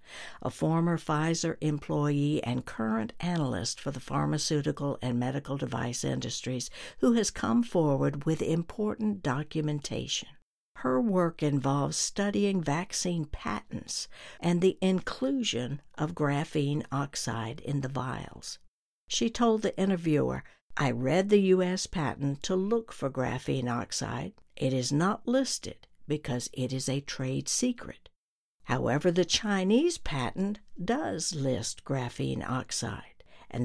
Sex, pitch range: female, 135-190 Hz